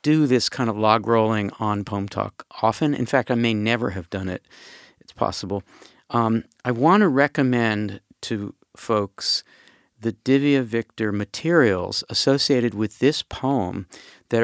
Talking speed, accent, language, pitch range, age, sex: 150 wpm, American, English, 100-120 Hz, 50-69, male